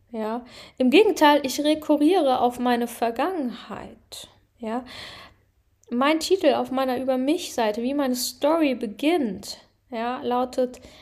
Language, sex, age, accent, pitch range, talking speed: German, female, 10-29, German, 240-280 Hz, 110 wpm